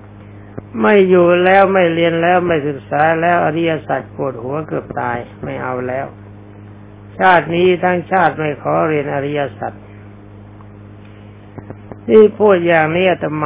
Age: 60-79